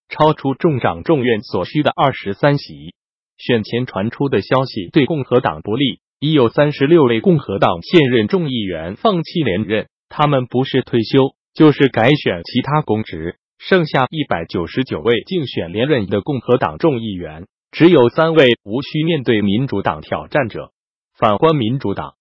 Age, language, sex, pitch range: 20-39, Chinese, male, 110-150 Hz